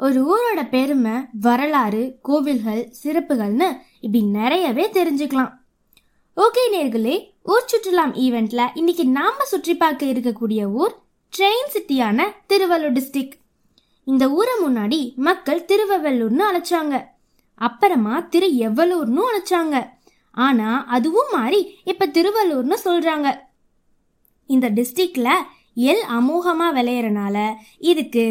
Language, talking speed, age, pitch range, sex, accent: Tamil, 40 wpm, 20-39, 250-375 Hz, female, native